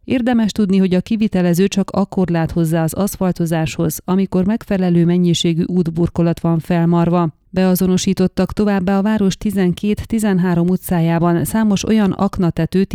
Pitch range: 170-195 Hz